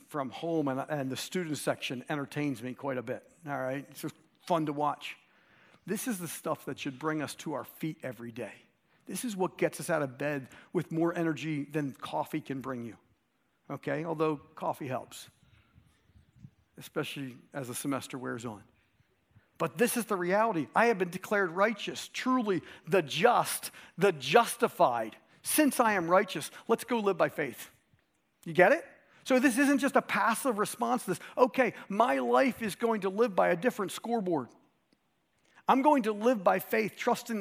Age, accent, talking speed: 50-69, American, 180 wpm